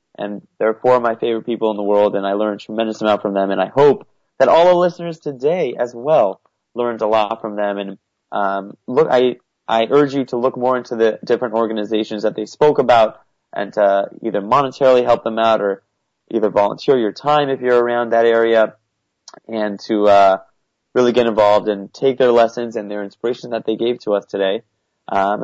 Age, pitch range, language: 30-49, 105-130 Hz, English